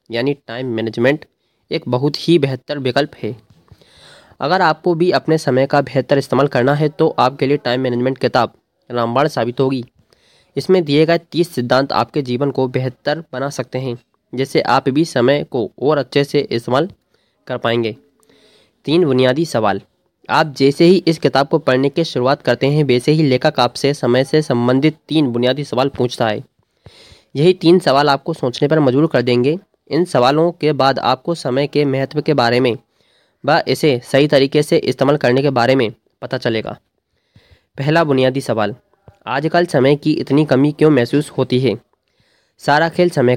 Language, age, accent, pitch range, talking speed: Hindi, 20-39, native, 125-150 Hz, 170 wpm